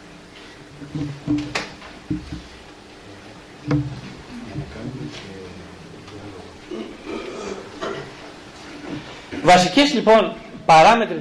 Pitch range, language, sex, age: 140-195 Hz, Greek, male, 40-59